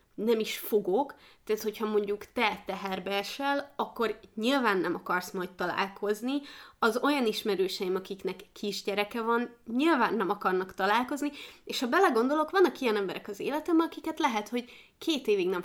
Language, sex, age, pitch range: Hungarian, female, 20-39, 195-240 Hz